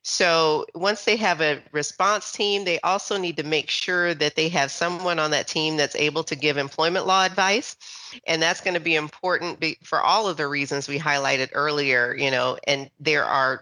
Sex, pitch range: female, 145-170 Hz